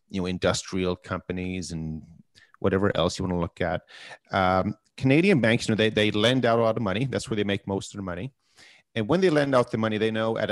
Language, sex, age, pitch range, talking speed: English, male, 40-59, 90-115 Hz, 245 wpm